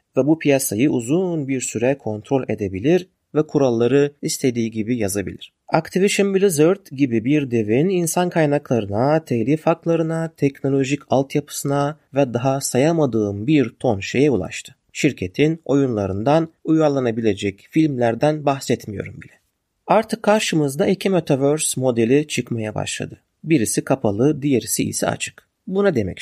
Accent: native